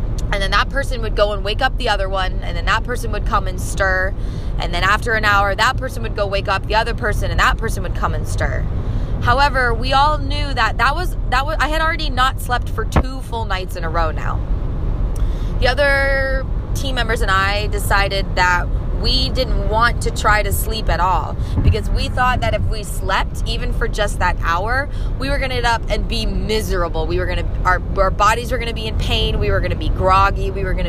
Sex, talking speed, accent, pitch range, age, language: female, 235 wpm, American, 95-115 Hz, 20-39, English